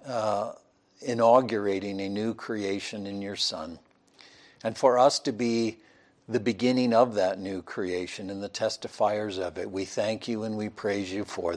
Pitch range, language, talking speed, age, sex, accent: 100-125 Hz, English, 165 wpm, 60-79, male, American